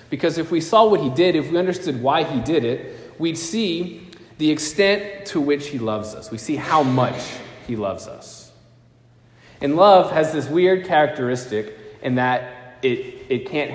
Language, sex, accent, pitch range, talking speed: English, male, American, 120-150 Hz, 180 wpm